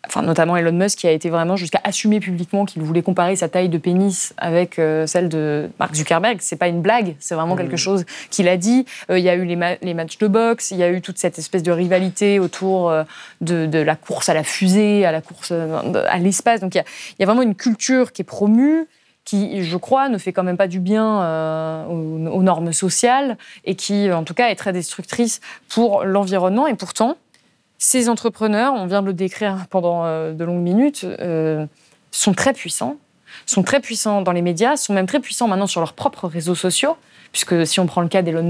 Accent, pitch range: French, 175-215 Hz